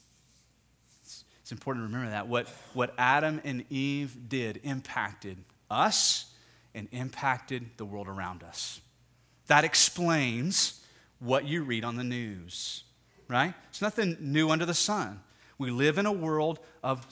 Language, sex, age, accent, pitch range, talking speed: English, male, 30-49, American, 125-175 Hz, 140 wpm